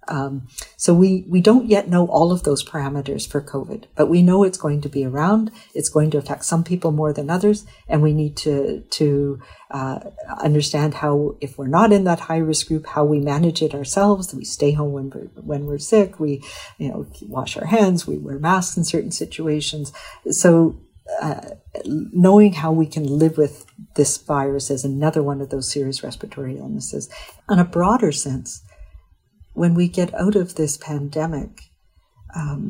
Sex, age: female, 50-69